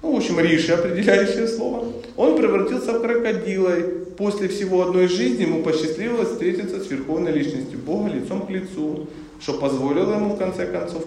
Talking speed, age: 165 wpm, 40-59